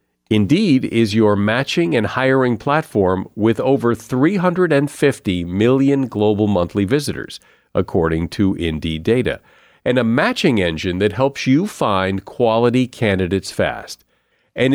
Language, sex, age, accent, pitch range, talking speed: English, male, 50-69, American, 100-135 Hz, 120 wpm